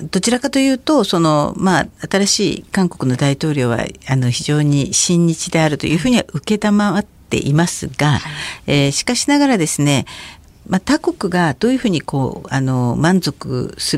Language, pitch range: Japanese, 140-195 Hz